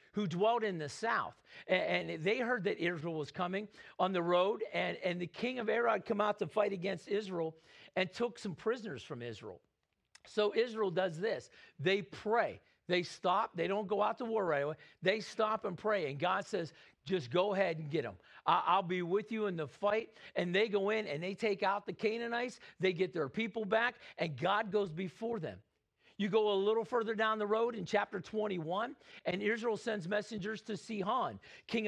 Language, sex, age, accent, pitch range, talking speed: English, male, 50-69, American, 180-220 Hz, 200 wpm